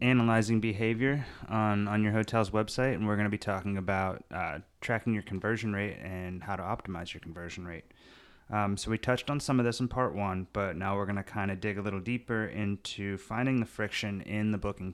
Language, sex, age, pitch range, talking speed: English, male, 30-49, 95-110 Hz, 220 wpm